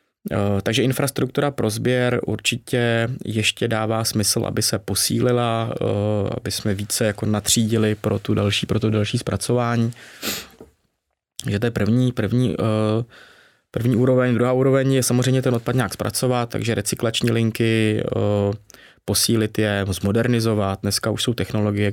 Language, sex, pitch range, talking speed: Czech, male, 100-115 Hz, 120 wpm